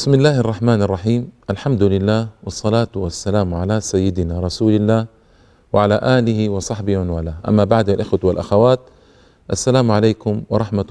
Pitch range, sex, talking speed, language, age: 100-130 Hz, male, 125 wpm, Arabic, 40-59